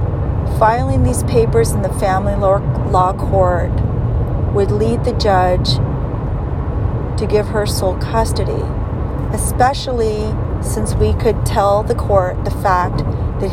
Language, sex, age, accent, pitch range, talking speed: English, female, 40-59, American, 100-115 Hz, 120 wpm